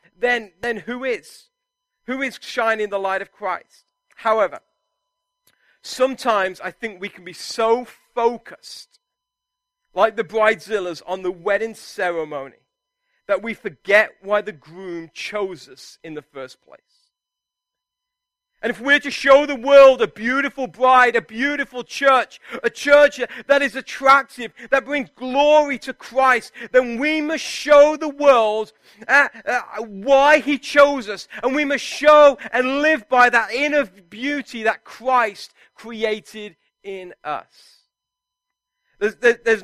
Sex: male